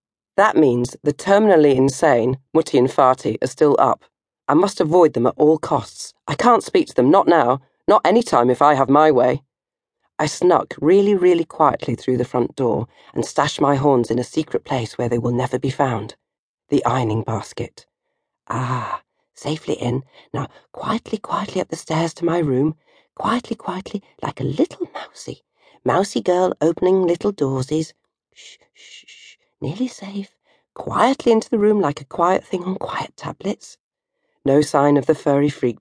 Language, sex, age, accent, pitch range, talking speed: English, female, 40-59, British, 130-195 Hz, 175 wpm